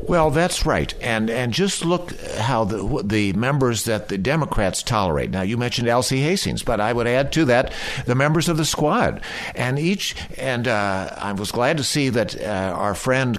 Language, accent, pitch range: English, American, 110-150 Hz